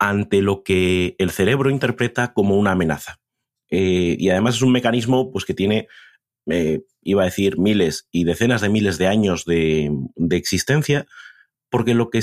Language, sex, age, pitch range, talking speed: Spanish, male, 30-49, 95-125 Hz, 170 wpm